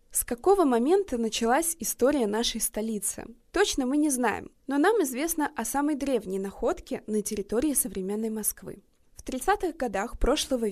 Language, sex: Russian, female